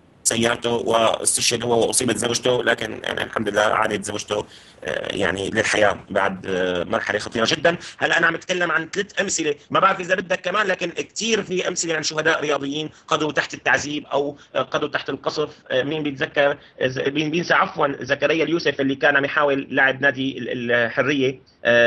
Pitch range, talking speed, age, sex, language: 125-155 Hz, 155 wpm, 30-49, male, Arabic